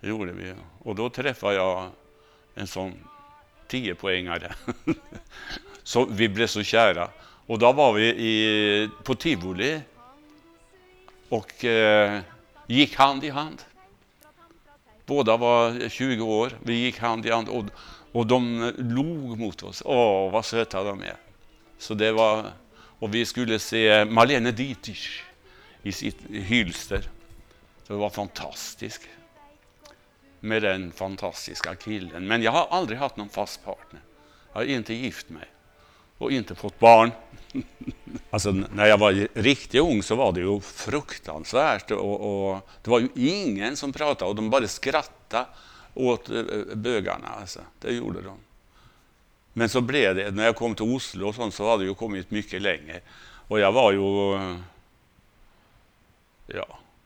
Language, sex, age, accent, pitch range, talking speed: Swedish, male, 60-79, Norwegian, 100-120 Hz, 140 wpm